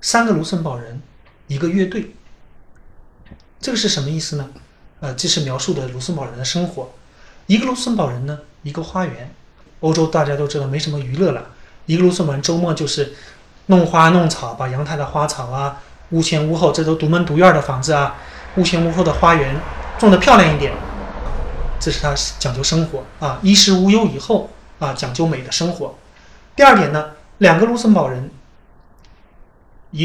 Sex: male